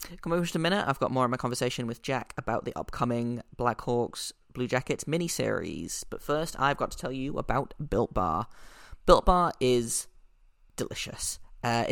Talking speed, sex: 185 wpm, male